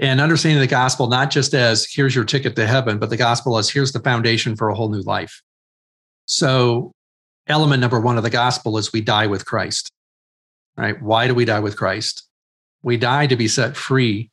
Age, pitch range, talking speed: 40-59, 115-135 Hz, 205 wpm